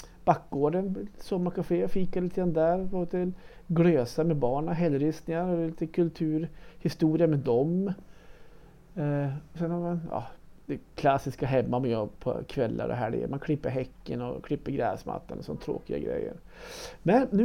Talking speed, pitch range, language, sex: 140 wpm, 145-180 Hz, Swedish, male